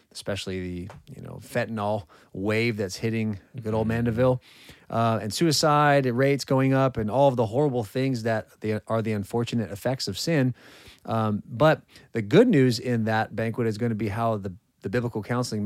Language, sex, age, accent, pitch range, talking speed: English, male, 30-49, American, 105-135 Hz, 180 wpm